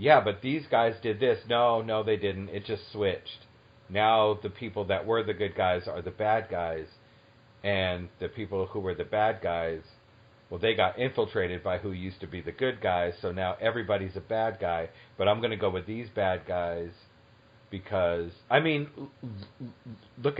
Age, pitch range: 40-59, 100-120 Hz